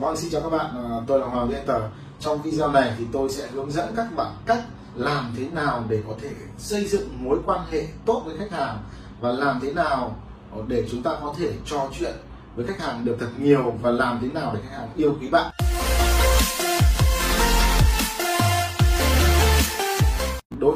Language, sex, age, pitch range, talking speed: Vietnamese, male, 30-49, 120-170 Hz, 190 wpm